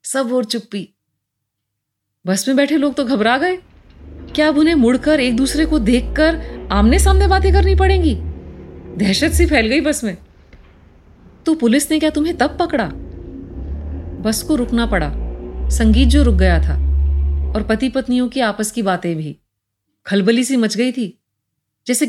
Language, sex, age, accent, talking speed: Hindi, female, 30-49, native, 160 wpm